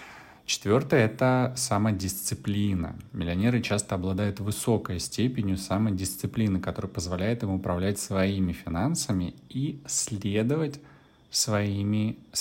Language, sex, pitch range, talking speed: Russian, male, 95-120 Hz, 80 wpm